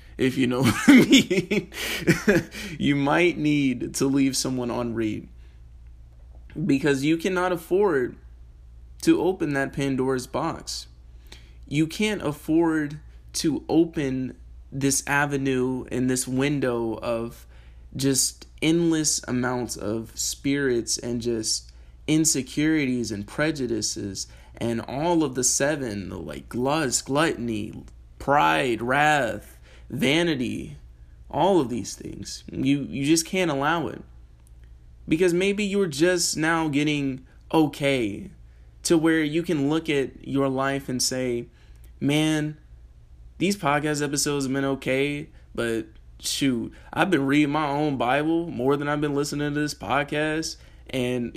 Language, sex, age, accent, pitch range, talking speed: English, male, 20-39, American, 105-150 Hz, 125 wpm